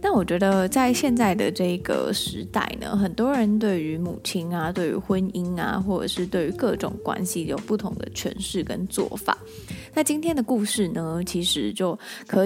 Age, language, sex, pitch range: 20-39, Chinese, female, 185-225 Hz